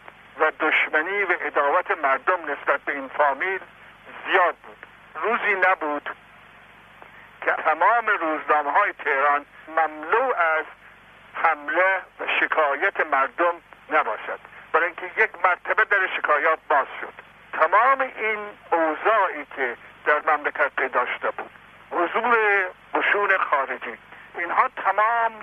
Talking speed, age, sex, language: 110 wpm, 60-79, male, Persian